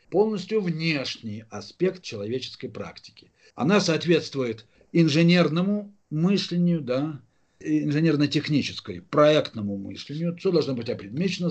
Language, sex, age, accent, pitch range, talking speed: Russian, male, 50-69, native, 130-180 Hz, 90 wpm